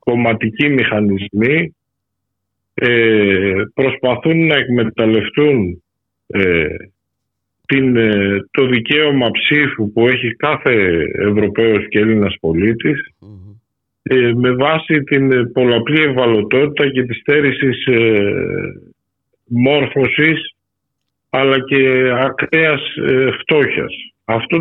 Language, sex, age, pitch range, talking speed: Greek, male, 50-69, 110-145 Hz, 90 wpm